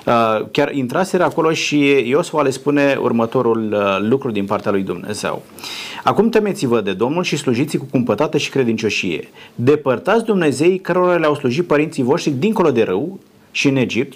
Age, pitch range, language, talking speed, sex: 30-49, 125-175 Hz, Romanian, 160 wpm, male